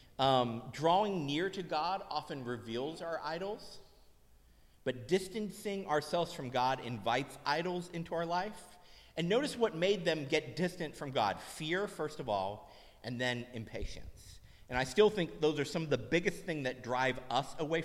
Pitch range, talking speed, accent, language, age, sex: 125-170 Hz, 170 wpm, American, English, 40-59, male